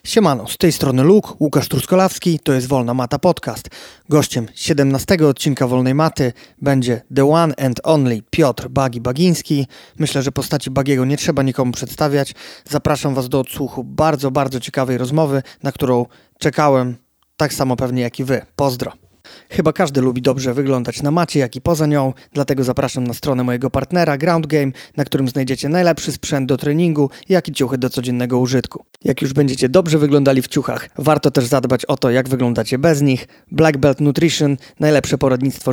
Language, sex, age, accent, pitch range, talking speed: Polish, male, 30-49, native, 130-155 Hz, 175 wpm